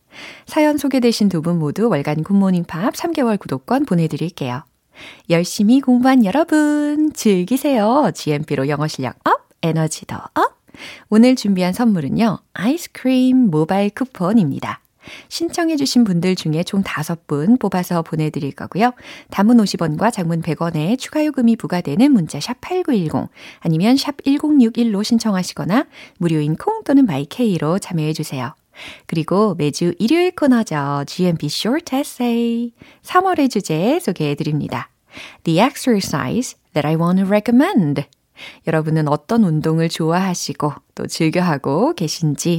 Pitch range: 155-250 Hz